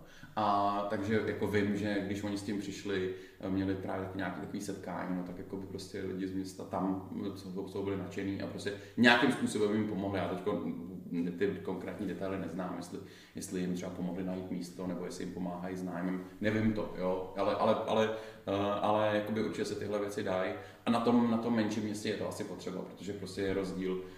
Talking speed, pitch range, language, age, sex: 195 wpm, 95-105 Hz, Czech, 20-39, male